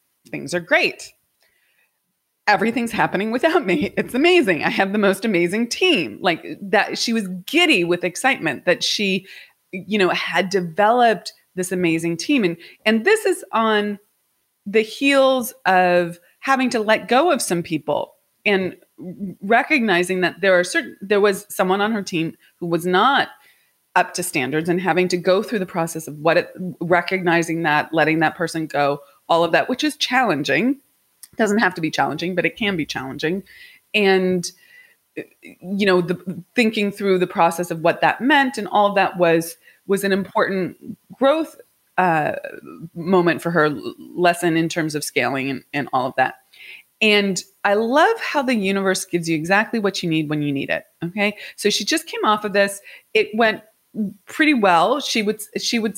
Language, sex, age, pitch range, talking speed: English, female, 20-39, 175-225 Hz, 175 wpm